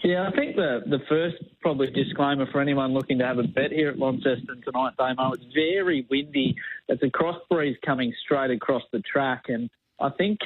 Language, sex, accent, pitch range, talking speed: English, male, Australian, 125-145 Hz, 200 wpm